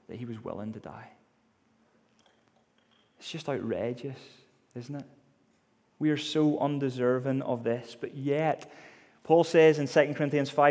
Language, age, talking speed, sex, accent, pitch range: English, 30-49, 135 wpm, male, British, 125-165 Hz